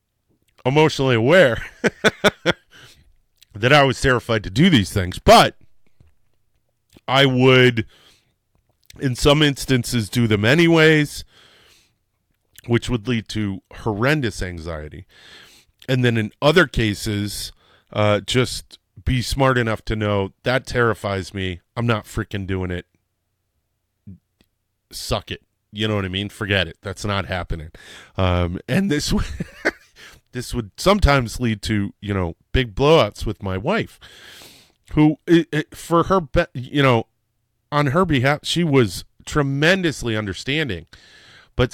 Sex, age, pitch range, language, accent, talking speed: male, 30-49, 100-130 Hz, English, American, 120 wpm